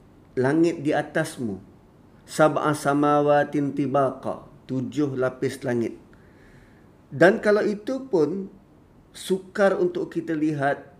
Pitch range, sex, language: 115-140 Hz, male, Malay